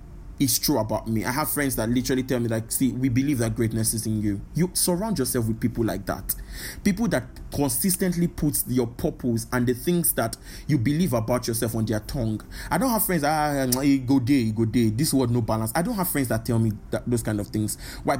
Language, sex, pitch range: English, male, 110-145 Hz